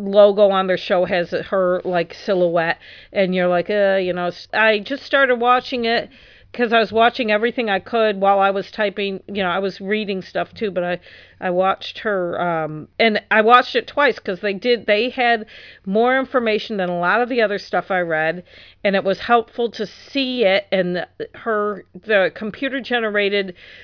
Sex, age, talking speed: female, 50-69, 190 wpm